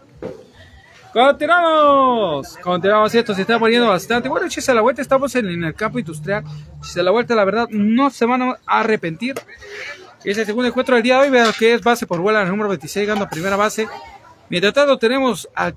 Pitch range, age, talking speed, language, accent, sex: 200-255 Hz, 40-59, 200 wpm, Spanish, Mexican, male